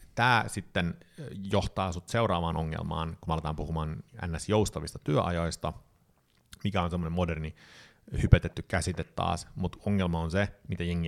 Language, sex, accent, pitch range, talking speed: Finnish, male, native, 85-105 Hz, 130 wpm